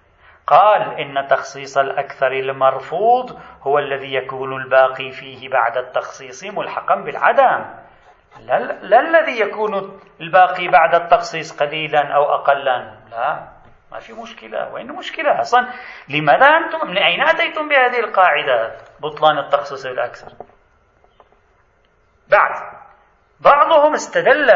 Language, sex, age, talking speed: Arabic, male, 40-59, 110 wpm